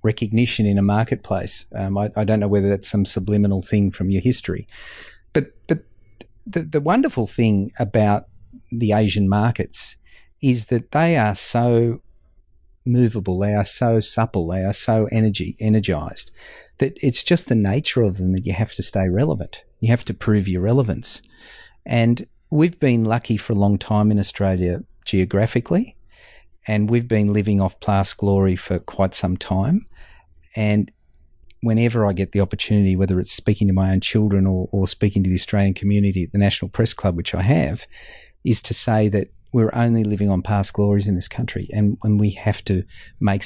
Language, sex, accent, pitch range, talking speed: English, male, Australian, 95-115 Hz, 180 wpm